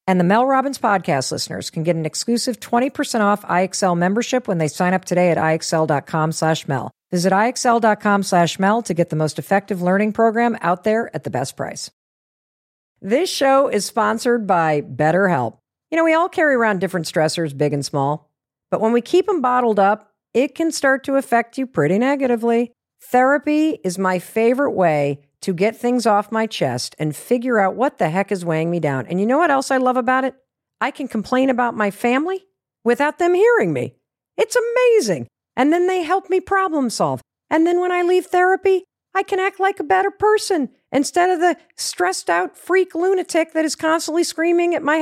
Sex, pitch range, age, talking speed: female, 190-315 Hz, 50-69, 195 wpm